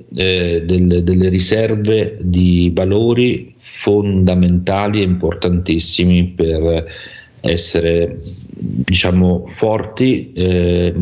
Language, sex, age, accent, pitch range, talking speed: Italian, male, 40-59, native, 85-100 Hz, 75 wpm